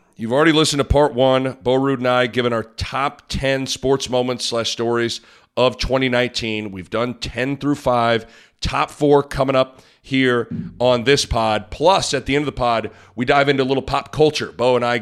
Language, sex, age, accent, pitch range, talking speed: English, male, 40-59, American, 110-145 Hz, 200 wpm